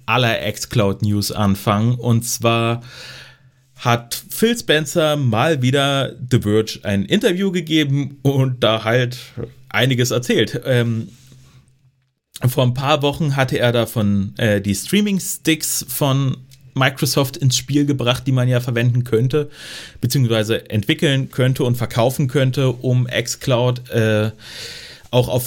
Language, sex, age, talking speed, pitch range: German, male, 30-49, 125 wpm, 115-140 Hz